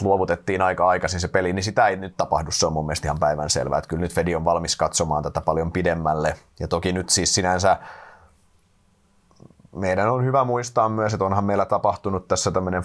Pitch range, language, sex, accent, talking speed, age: 80-100 Hz, Finnish, male, native, 190 wpm, 30-49